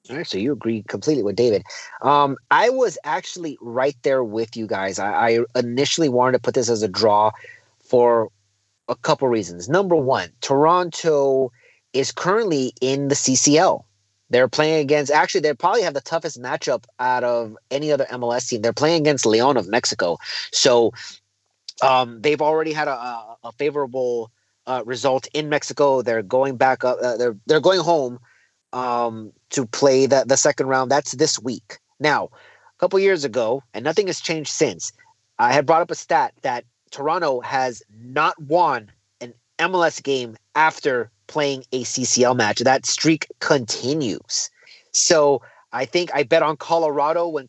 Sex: male